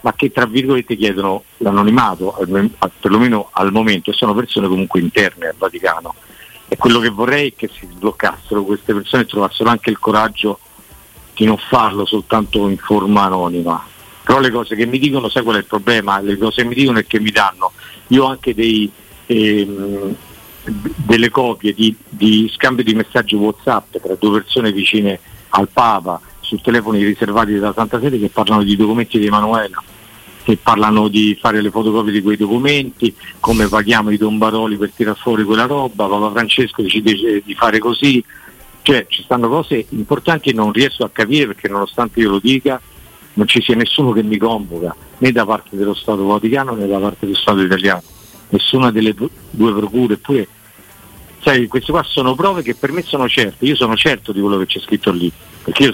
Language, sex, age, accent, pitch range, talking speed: Italian, male, 50-69, native, 100-120 Hz, 185 wpm